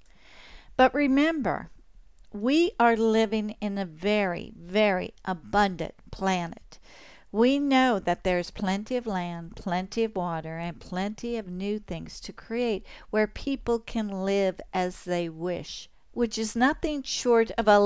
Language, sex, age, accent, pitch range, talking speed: English, female, 50-69, American, 195-235 Hz, 140 wpm